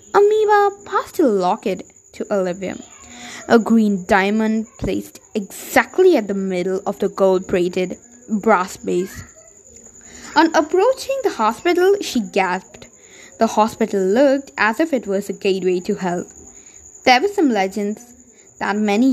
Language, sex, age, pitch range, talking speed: English, female, 20-39, 190-275 Hz, 130 wpm